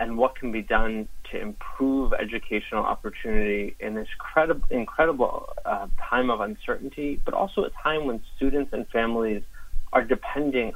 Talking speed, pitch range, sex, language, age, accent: 145 wpm, 105-125 Hz, male, English, 30-49, American